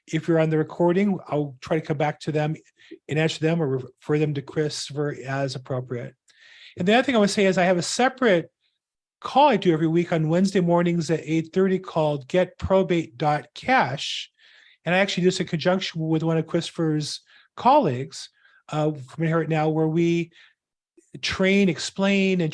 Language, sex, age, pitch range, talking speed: English, male, 40-59, 160-195 Hz, 185 wpm